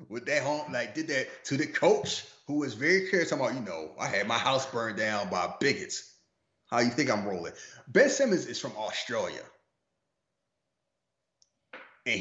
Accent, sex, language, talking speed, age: American, male, English, 170 wpm, 30-49